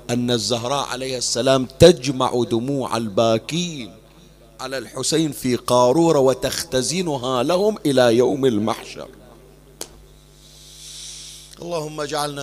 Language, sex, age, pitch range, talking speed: Arabic, male, 30-49, 115-145 Hz, 85 wpm